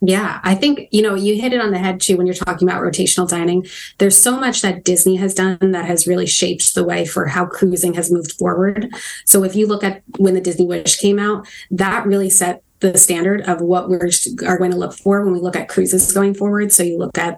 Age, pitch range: 20-39, 180-200 Hz